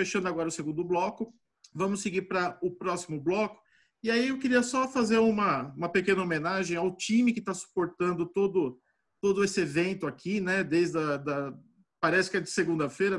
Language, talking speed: Portuguese, 180 wpm